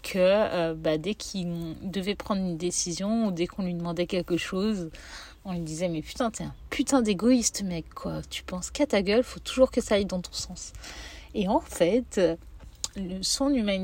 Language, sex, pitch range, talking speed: French, female, 175-255 Hz, 195 wpm